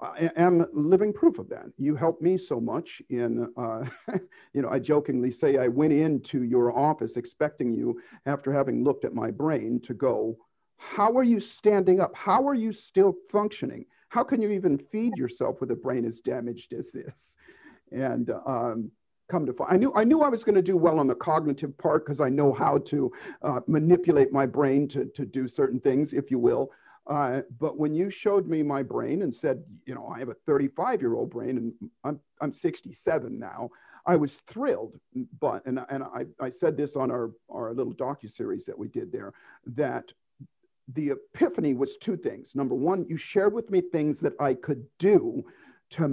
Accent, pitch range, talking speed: American, 135-195 Hz, 195 wpm